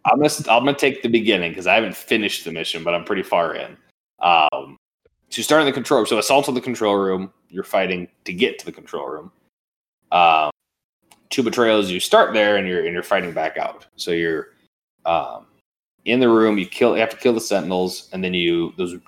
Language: English